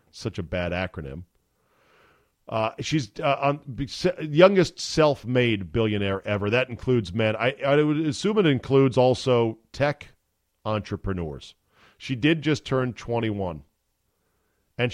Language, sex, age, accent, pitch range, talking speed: English, male, 40-59, American, 100-135 Hz, 120 wpm